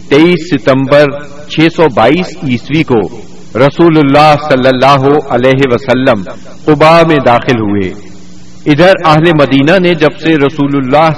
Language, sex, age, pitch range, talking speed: Urdu, male, 50-69, 120-155 Hz, 125 wpm